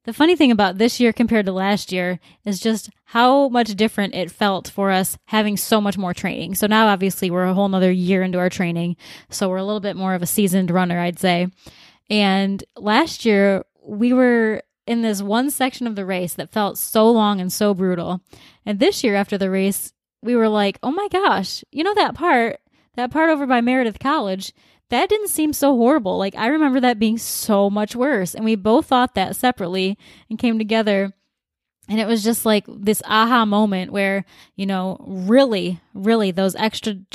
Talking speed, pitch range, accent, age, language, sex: 200 wpm, 195-235 Hz, American, 10-29, English, female